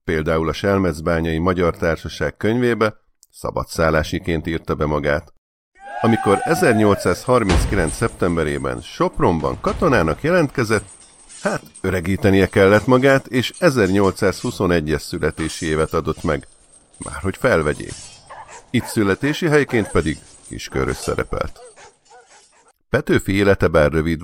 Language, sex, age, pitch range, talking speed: Hungarian, male, 50-69, 80-105 Hz, 95 wpm